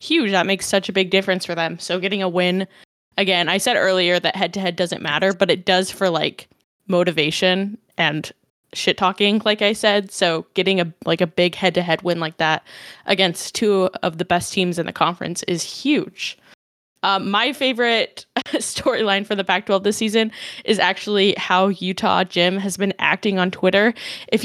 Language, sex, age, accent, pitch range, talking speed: English, female, 10-29, American, 180-210 Hz, 195 wpm